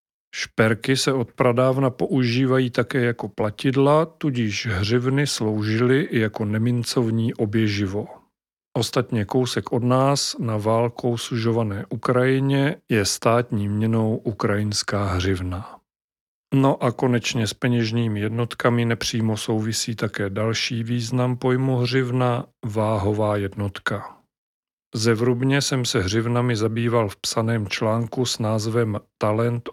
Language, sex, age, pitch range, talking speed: Czech, male, 40-59, 110-125 Hz, 110 wpm